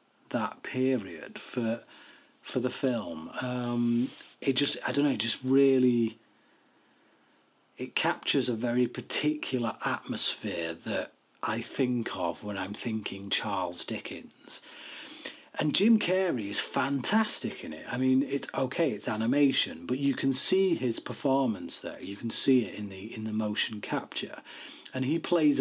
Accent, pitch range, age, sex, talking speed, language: British, 120-135 Hz, 40-59, male, 140 wpm, English